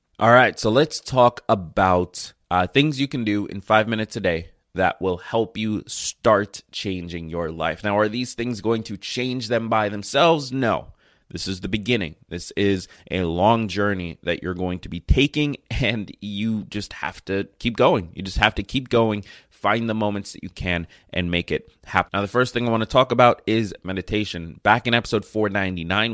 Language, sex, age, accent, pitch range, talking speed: English, male, 20-39, American, 95-115 Hz, 200 wpm